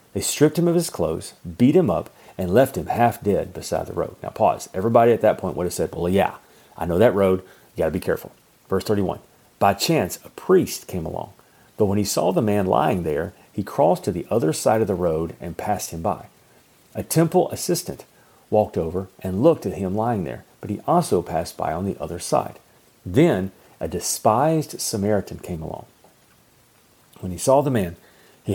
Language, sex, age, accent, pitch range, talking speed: English, male, 40-59, American, 90-115 Hz, 205 wpm